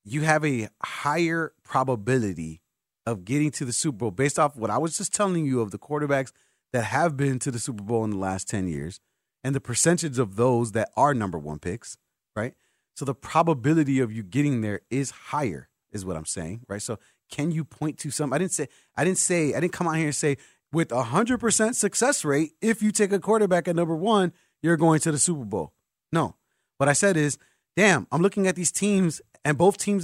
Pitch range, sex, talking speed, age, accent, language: 130-180 Hz, male, 220 wpm, 30-49, American, English